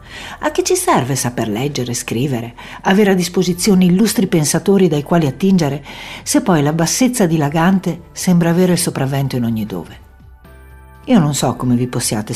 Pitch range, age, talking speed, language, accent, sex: 125-175 Hz, 60-79, 160 wpm, Italian, native, female